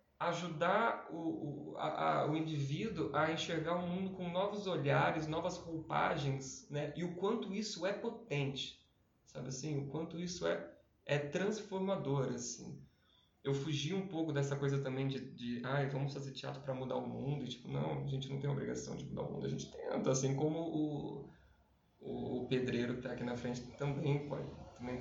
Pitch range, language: 120-150 Hz, Portuguese